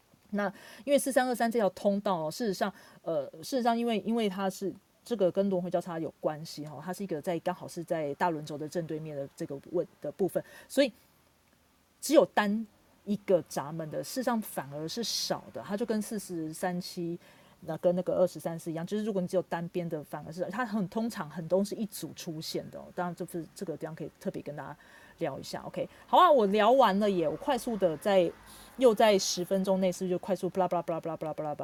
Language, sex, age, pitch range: Chinese, female, 30-49, 170-215 Hz